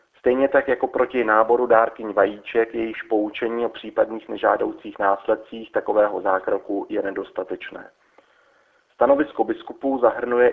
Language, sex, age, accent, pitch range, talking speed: Czech, male, 40-59, native, 110-125 Hz, 115 wpm